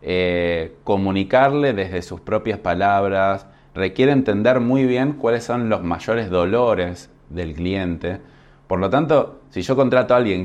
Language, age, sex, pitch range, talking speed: Spanish, 20-39, male, 90-125 Hz, 145 wpm